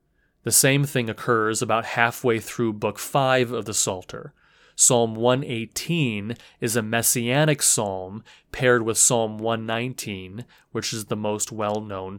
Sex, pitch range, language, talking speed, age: male, 110-135 Hz, English, 135 wpm, 30-49